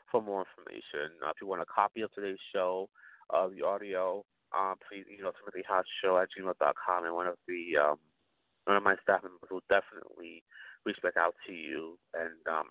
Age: 30-49